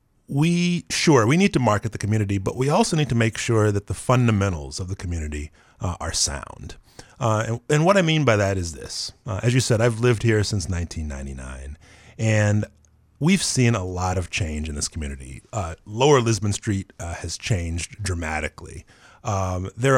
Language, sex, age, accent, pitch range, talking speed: English, male, 30-49, American, 100-125 Hz, 190 wpm